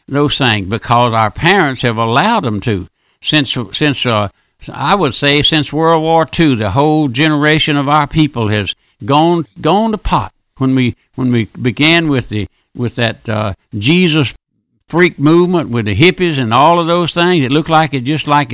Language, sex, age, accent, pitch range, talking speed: English, male, 60-79, American, 130-170 Hz, 185 wpm